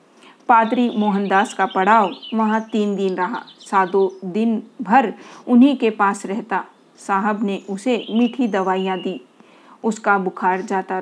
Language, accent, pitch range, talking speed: Hindi, native, 195-240 Hz, 130 wpm